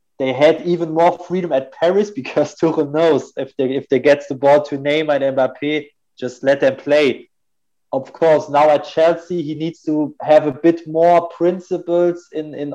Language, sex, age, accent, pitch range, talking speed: Hebrew, male, 20-39, German, 135-160 Hz, 185 wpm